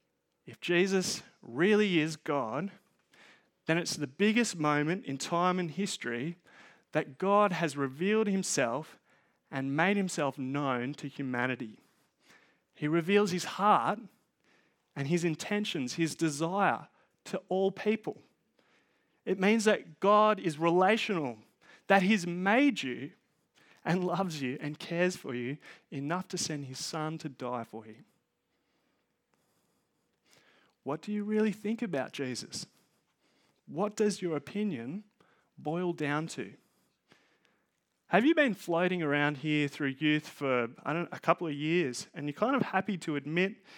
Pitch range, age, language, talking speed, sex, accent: 145-195 Hz, 30-49, English, 135 wpm, male, Australian